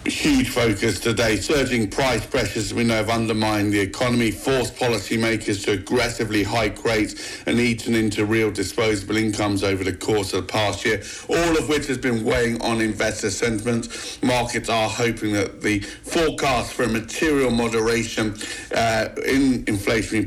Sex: male